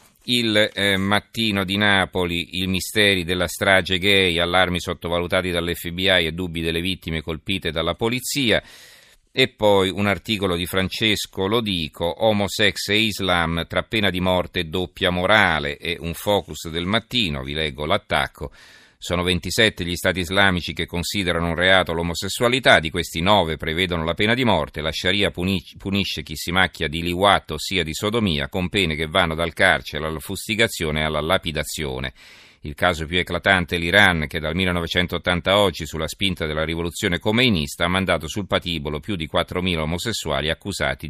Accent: native